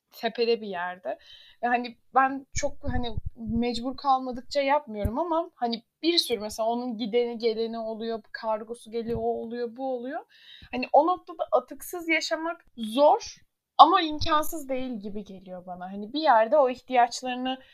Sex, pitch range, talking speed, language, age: female, 215-265 Hz, 140 wpm, Turkish, 10-29